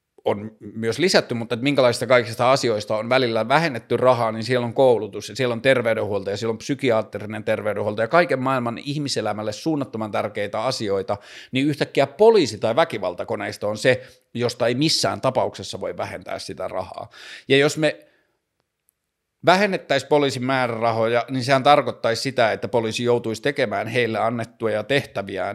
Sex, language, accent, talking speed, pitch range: male, Finnish, native, 150 wpm, 110-130 Hz